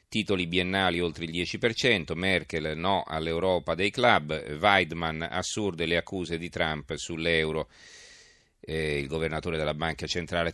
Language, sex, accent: Italian, male, native